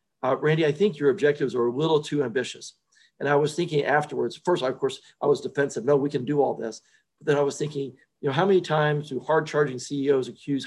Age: 40-59